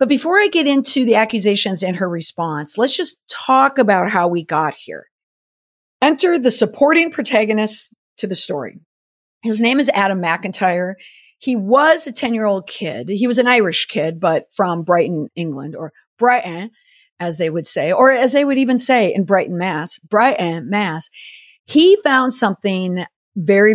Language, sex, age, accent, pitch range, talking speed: English, female, 50-69, American, 175-245 Hz, 165 wpm